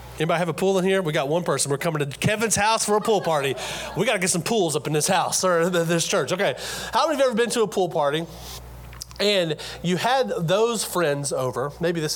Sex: male